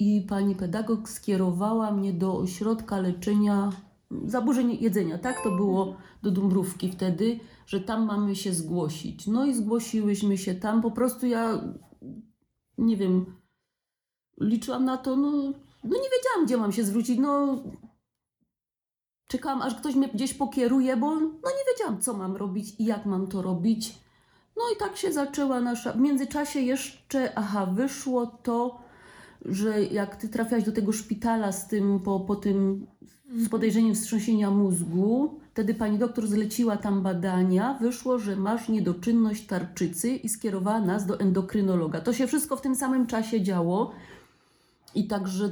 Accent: native